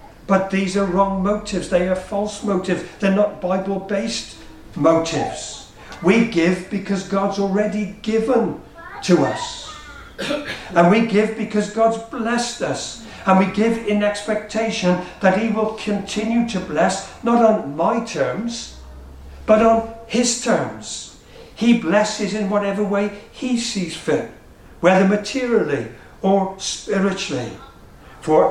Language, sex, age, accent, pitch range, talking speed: English, male, 50-69, British, 155-210 Hz, 125 wpm